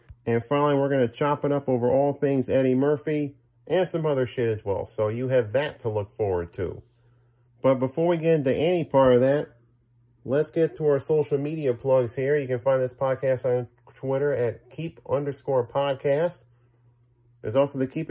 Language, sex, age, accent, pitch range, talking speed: English, male, 40-59, American, 120-140 Hz, 195 wpm